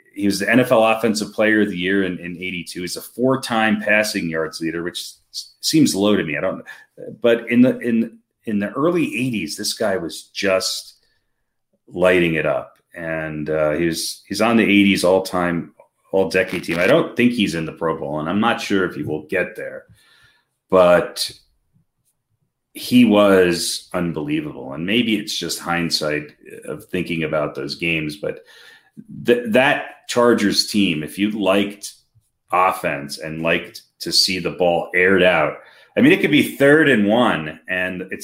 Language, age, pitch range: English, 30-49, 85-115 Hz